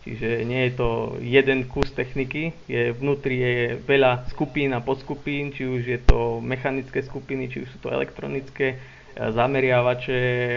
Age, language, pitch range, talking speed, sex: 20-39, Slovak, 120-135 Hz, 150 wpm, male